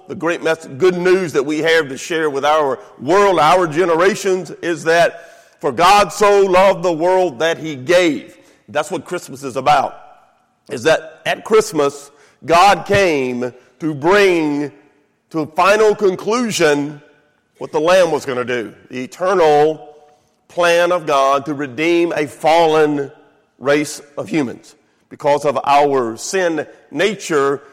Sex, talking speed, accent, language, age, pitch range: male, 145 wpm, American, English, 50-69, 145-180 Hz